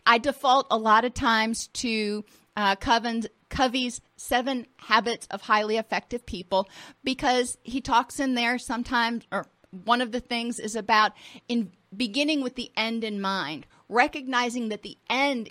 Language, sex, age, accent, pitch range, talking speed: English, female, 40-59, American, 210-255 Hz, 155 wpm